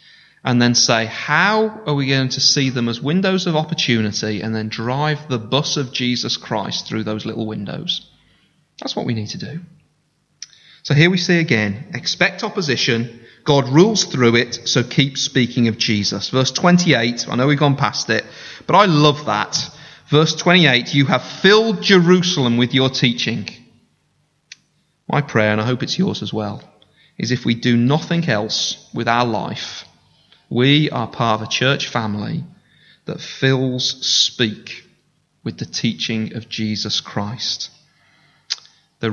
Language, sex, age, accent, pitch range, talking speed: English, male, 30-49, British, 115-150 Hz, 160 wpm